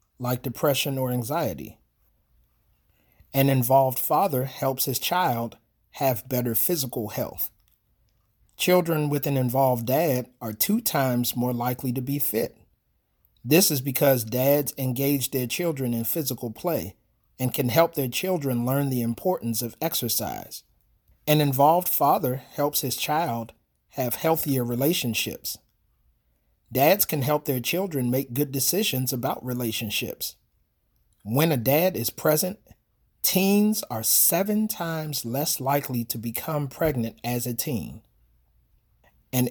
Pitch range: 120-155 Hz